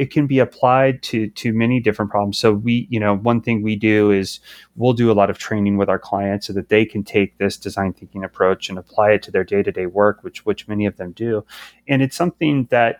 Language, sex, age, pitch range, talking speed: English, male, 30-49, 105-125 Hz, 245 wpm